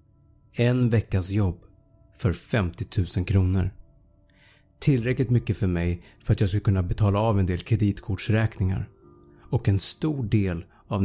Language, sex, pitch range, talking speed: Swedish, male, 95-115 Hz, 140 wpm